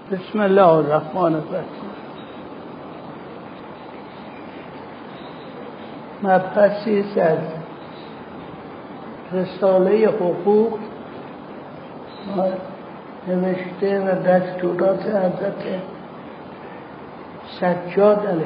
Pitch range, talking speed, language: 180-200 Hz, 40 wpm, Persian